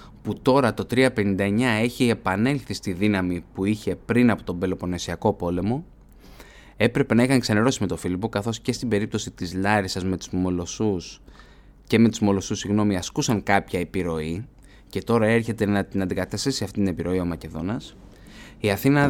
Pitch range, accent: 95-120 Hz, native